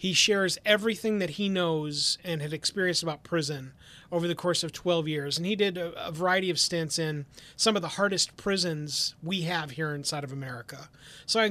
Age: 30-49